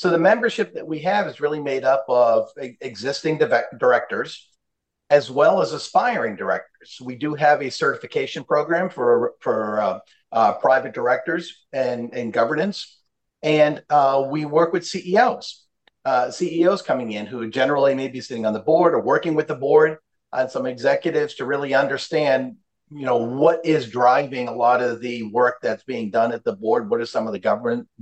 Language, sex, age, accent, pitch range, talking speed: English, male, 50-69, American, 125-165 Hz, 180 wpm